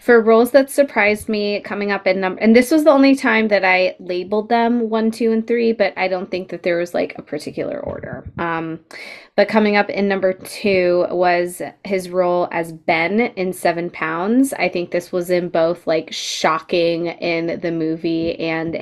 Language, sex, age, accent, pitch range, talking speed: English, female, 20-39, American, 175-215 Hz, 195 wpm